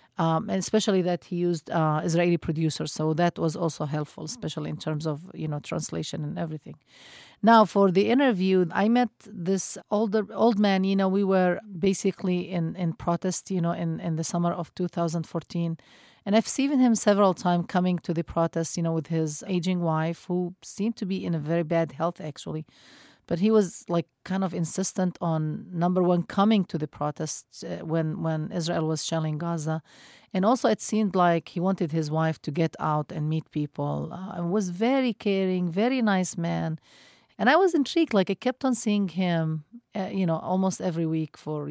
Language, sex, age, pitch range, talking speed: English, female, 40-59, 160-195 Hz, 195 wpm